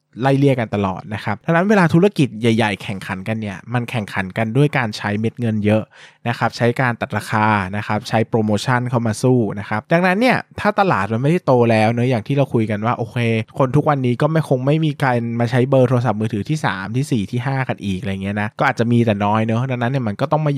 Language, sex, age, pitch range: Thai, male, 20-39, 110-140 Hz